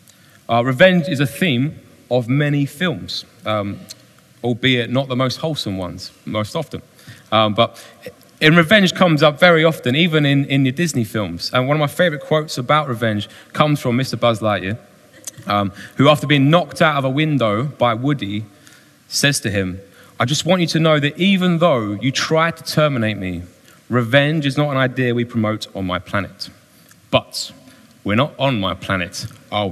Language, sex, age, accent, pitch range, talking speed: English, male, 20-39, British, 105-145 Hz, 180 wpm